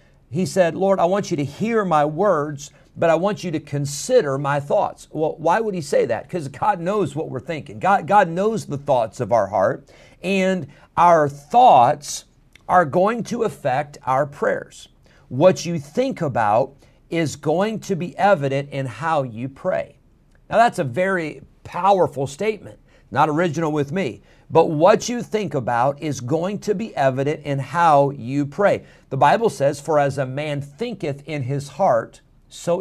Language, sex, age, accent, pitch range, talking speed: English, male, 50-69, American, 140-190 Hz, 175 wpm